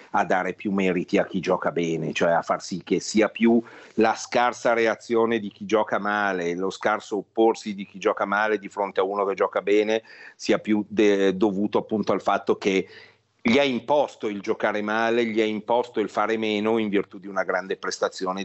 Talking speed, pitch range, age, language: 200 wpm, 95-110 Hz, 40-59, Italian